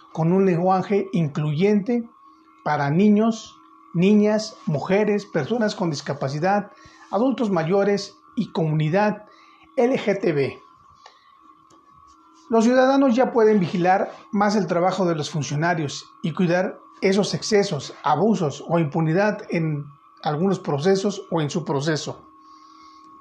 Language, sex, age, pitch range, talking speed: Spanish, male, 40-59, 165-250 Hz, 105 wpm